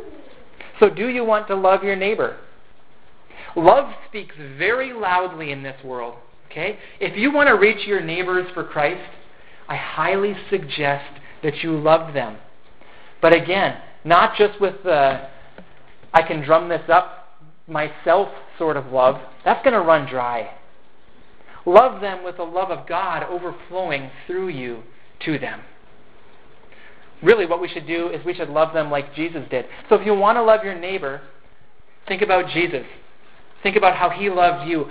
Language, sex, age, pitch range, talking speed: English, male, 40-59, 145-190 Hz, 160 wpm